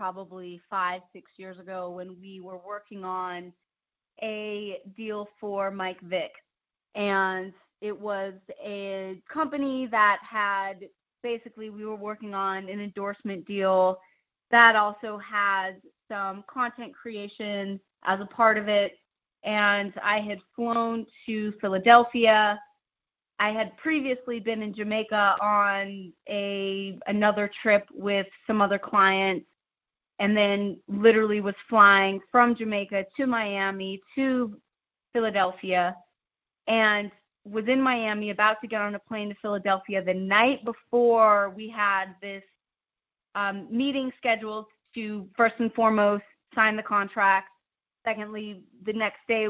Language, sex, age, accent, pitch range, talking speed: English, female, 30-49, American, 195-220 Hz, 125 wpm